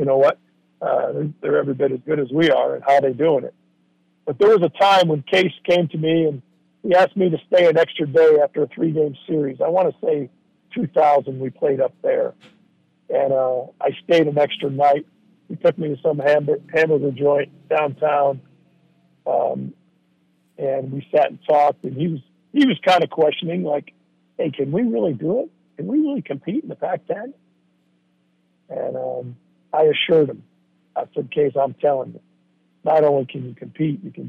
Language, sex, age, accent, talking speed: English, male, 50-69, American, 200 wpm